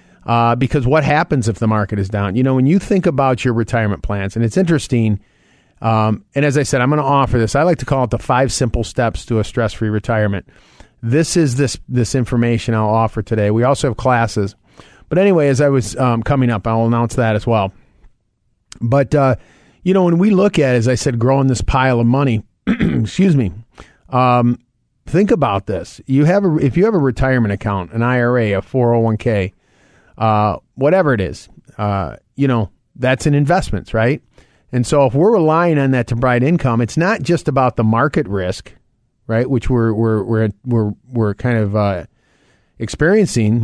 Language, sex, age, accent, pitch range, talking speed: English, male, 40-59, American, 110-140 Hz, 200 wpm